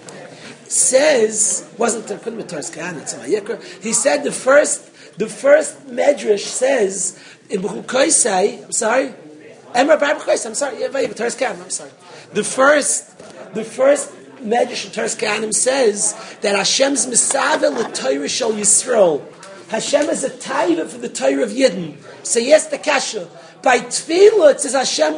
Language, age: English, 40-59